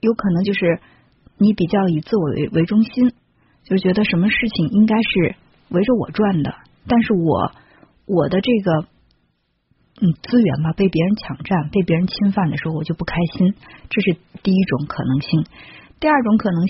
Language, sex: Chinese, female